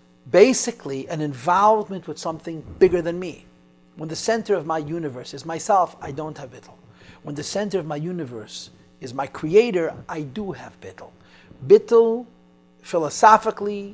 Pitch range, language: 130-190 Hz, English